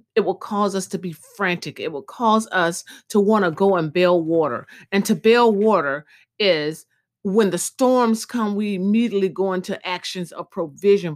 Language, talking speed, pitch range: English, 185 wpm, 170-220 Hz